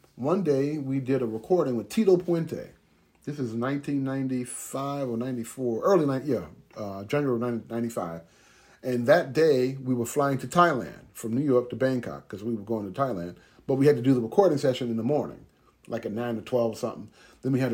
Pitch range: 120-165 Hz